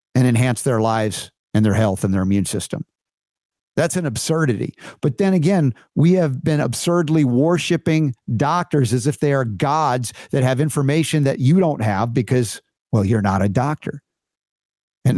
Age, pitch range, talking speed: 50-69, 125-165 Hz, 165 wpm